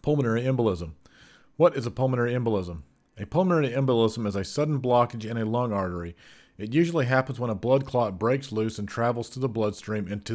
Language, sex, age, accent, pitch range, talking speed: English, male, 40-59, American, 105-130 Hz, 195 wpm